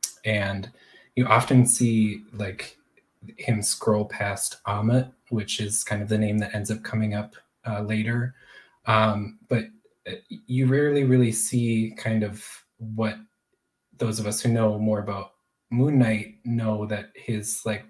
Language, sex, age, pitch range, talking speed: English, male, 20-39, 110-125 Hz, 150 wpm